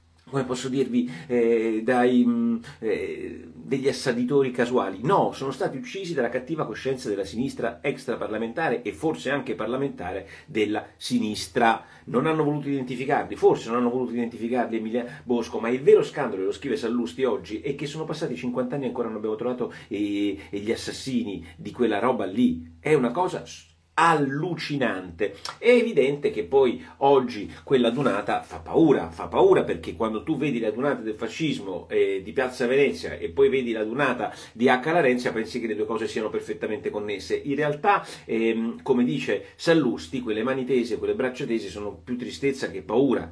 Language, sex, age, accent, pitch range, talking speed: Italian, male, 40-59, native, 120-195 Hz, 170 wpm